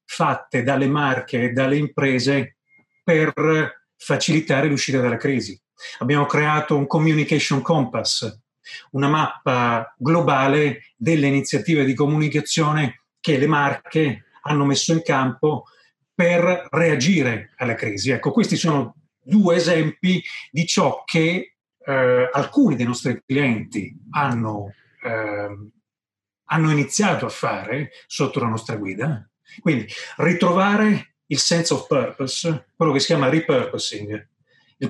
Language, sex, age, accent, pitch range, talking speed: Italian, male, 30-49, native, 125-155 Hz, 120 wpm